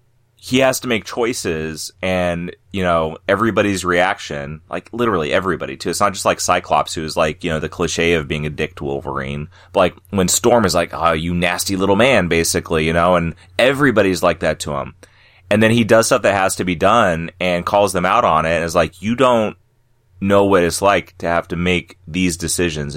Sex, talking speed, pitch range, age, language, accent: male, 215 wpm, 85-100 Hz, 30-49, English, American